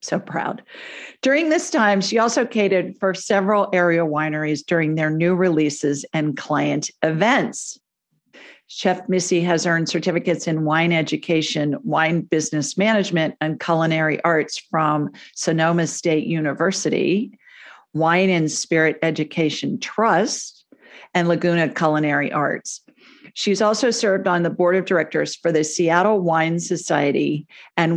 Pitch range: 155-190 Hz